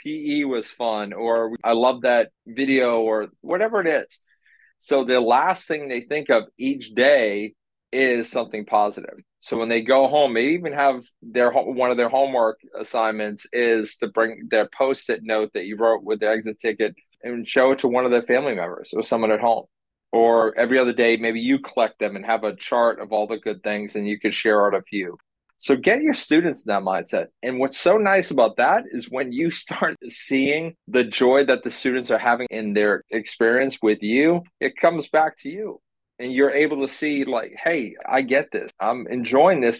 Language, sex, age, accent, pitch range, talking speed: English, male, 30-49, American, 110-140 Hz, 205 wpm